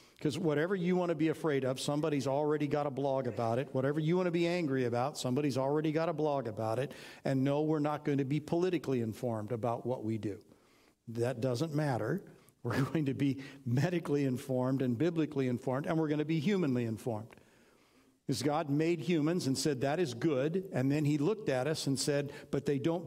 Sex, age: male, 60-79